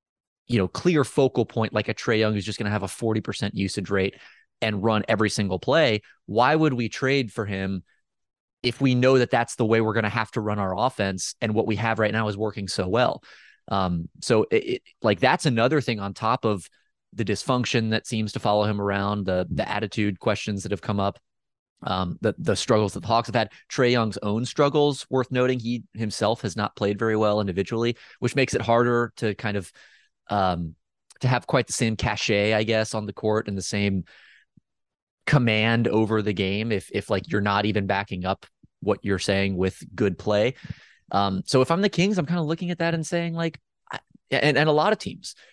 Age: 30-49